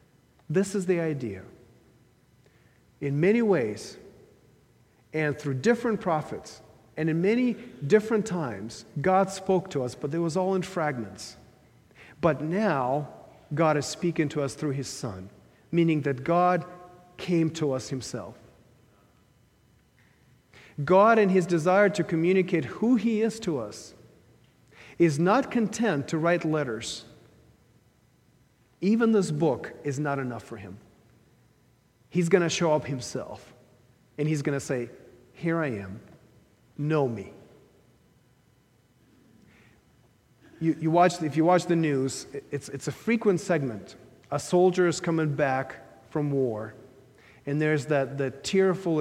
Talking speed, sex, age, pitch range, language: 135 wpm, male, 40-59, 125-175 Hz, English